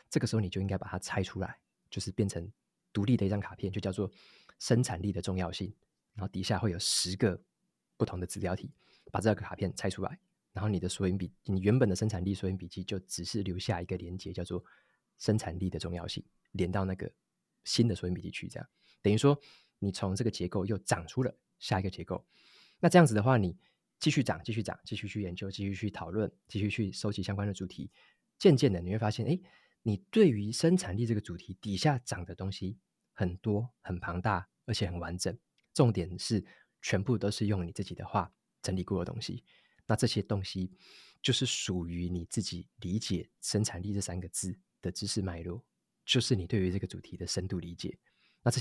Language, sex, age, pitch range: Chinese, male, 20-39, 90-115 Hz